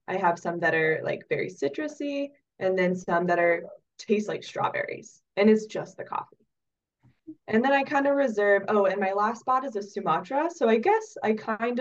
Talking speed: 205 wpm